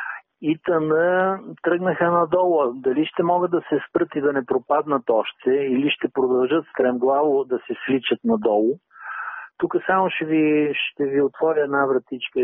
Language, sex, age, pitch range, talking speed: Bulgarian, male, 50-69, 135-175 Hz, 155 wpm